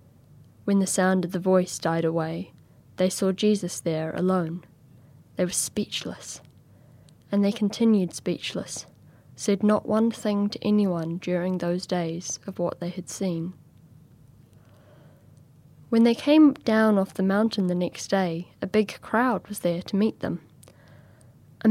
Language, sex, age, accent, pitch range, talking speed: English, female, 10-29, British, 150-210 Hz, 145 wpm